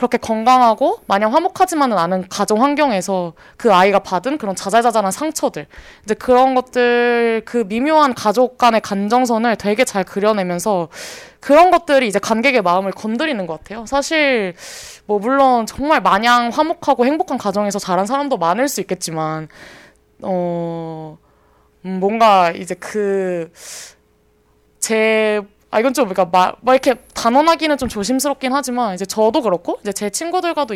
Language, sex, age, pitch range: Korean, female, 20-39, 190-265 Hz